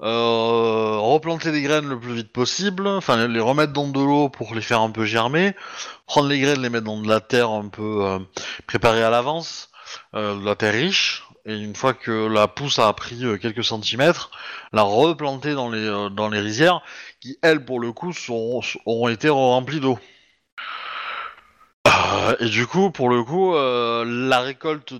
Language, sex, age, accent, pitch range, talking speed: French, male, 30-49, French, 110-145 Hz, 180 wpm